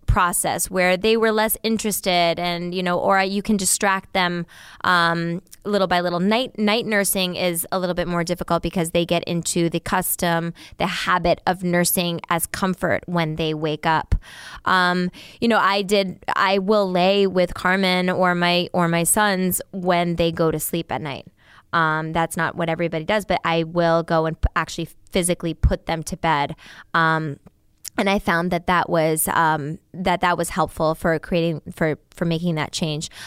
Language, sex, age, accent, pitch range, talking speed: English, female, 20-39, American, 165-185 Hz, 180 wpm